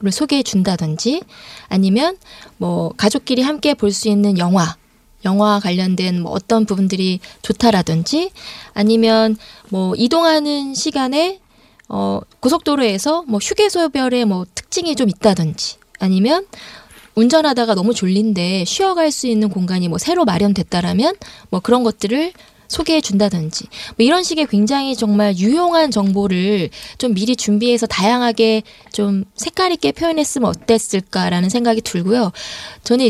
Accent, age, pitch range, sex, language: native, 20-39, 200-280 Hz, female, Korean